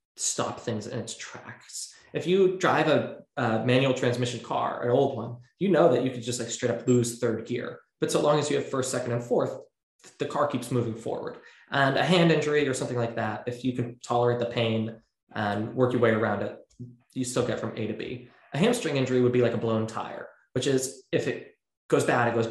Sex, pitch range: male, 115-130 Hz